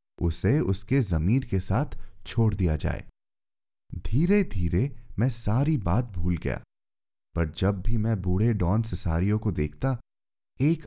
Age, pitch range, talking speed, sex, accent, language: 30-49, 85-130 Hz, 140 wpm, male, native, Hindi